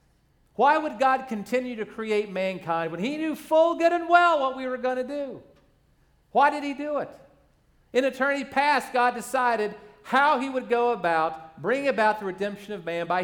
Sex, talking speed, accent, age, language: male, 190 wpm, American, 50-69, English